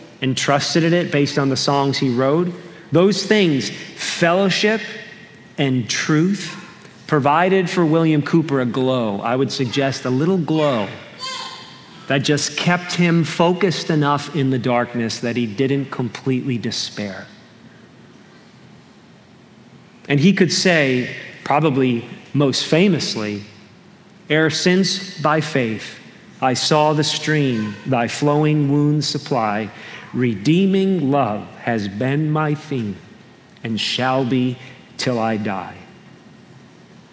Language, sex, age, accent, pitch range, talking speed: English, male, 40-59, American, 130-170 Hz, 115 wpm